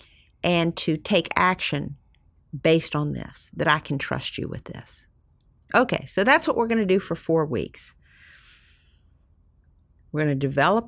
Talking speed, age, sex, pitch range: 150 wpm, 50-69, female, 135-190 Hz